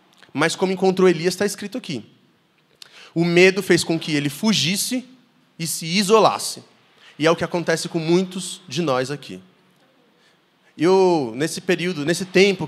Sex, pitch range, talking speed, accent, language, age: male, 140-185 Hz, 150 wpm, Brazilian, Portuguese, 20-39